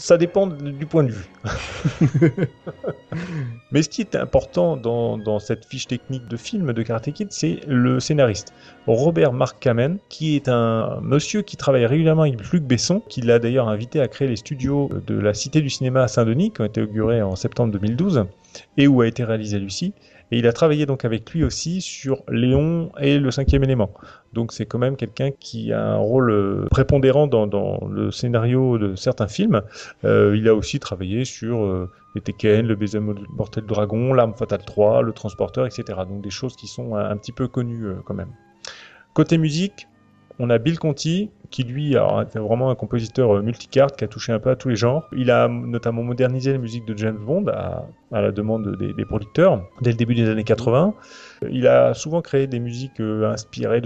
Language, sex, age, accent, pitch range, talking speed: French, male, 30-49, French, 110-140 Hz, 200 wpm